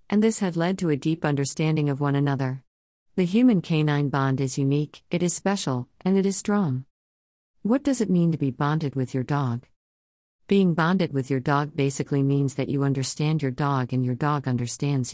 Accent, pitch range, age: American, 130-155 Hz, 50-69